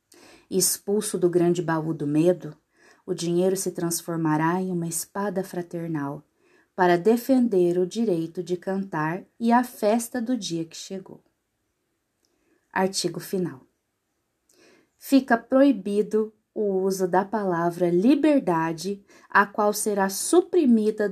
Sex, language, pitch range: female, Portuguese, 175-230 Hz